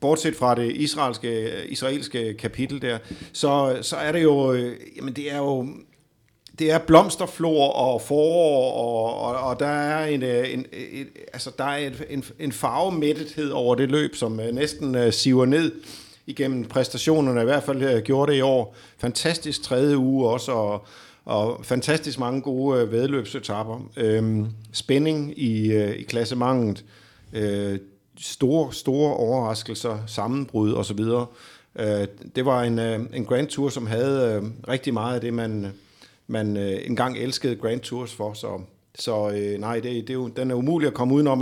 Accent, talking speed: native, 145 wpm